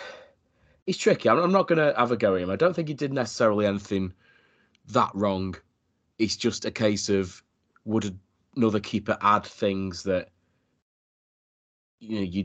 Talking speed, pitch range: 165 wpm, 90-105 Hz